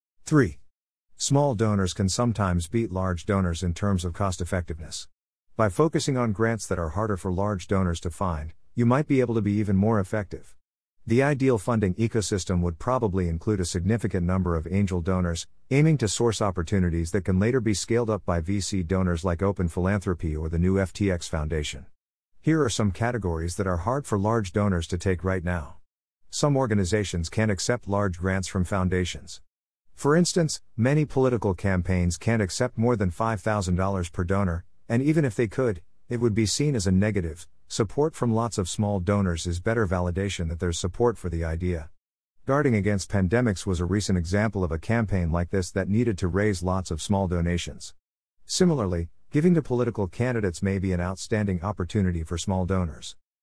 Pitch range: 90-110 Hz